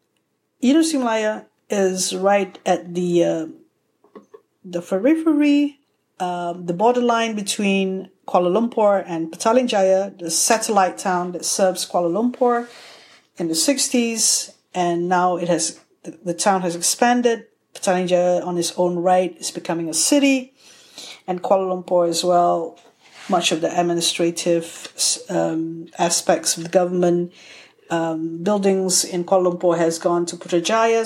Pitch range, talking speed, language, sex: 175-220 Hz, 130 wpm, English, female